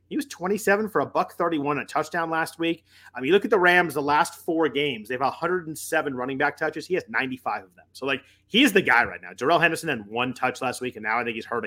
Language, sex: English, male